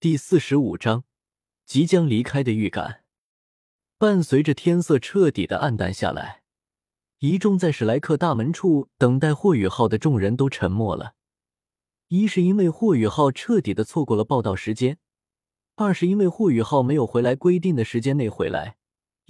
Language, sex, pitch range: Chinese, male, 110-165 Hz